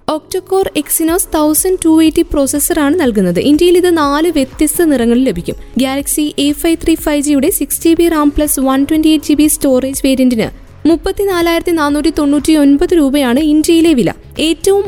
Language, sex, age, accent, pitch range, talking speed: Malayalam, female, 20-39, native, 275-330 Hz, 110 wpm